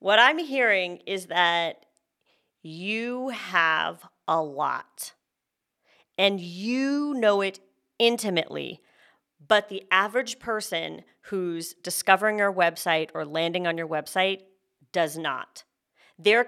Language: English